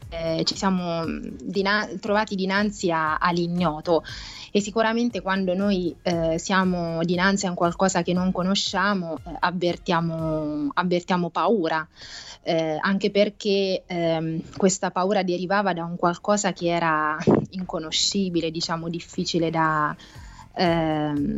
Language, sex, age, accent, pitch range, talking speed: Italian, female, 20-39, native, 160-195 Hz, 120 wpm